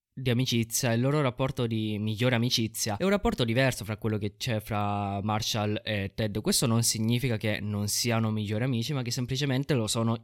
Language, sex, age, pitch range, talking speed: Italian, male, 20-39, 105-130 Hz, 195 wpm